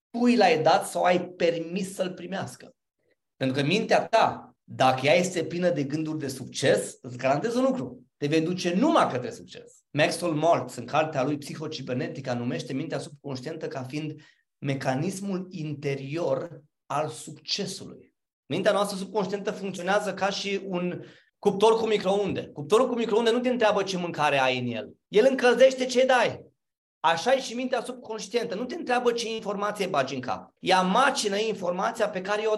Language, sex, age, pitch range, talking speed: Romanian, male, 30-49, 140-205 Hz, 165 wpm